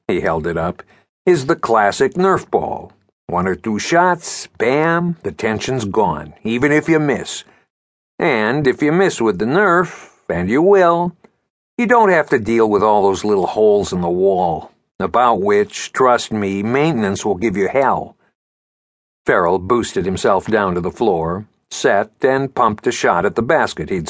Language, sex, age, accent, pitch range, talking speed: English, male, 60-79, American, 95-150 Hz, 170 wpm